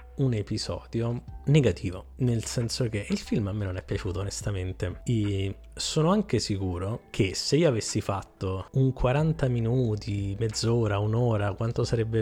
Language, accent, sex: Italian, native, male